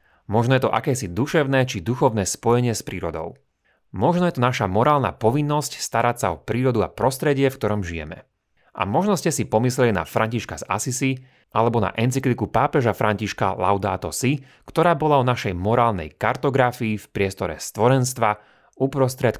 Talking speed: 160 wpm